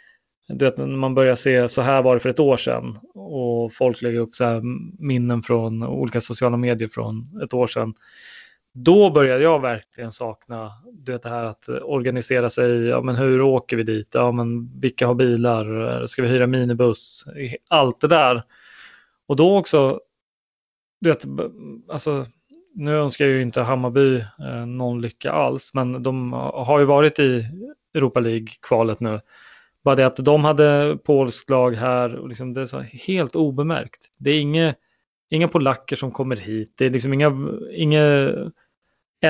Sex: male